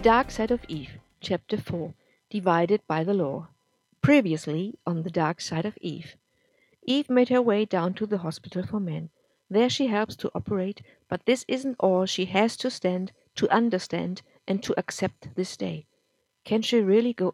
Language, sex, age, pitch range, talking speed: English, female, 50-69, 170-220 Hz, 175 wpm